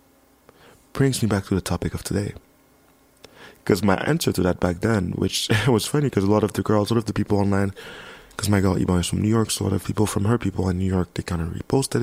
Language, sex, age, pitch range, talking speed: English, male, 30-49, 105-145 Hz, 265 wpm